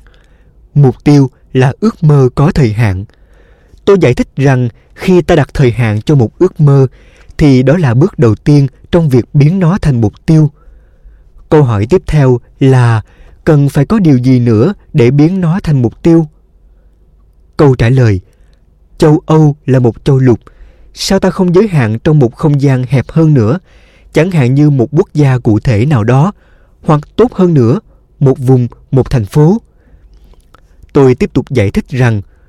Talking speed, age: 180 wpm, 20-39